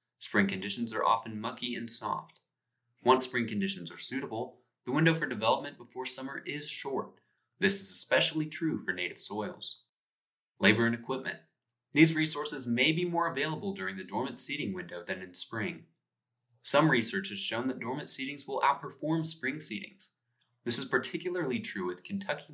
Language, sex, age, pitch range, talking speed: English, male, 20-39, 105-145 Hz, 160 wpm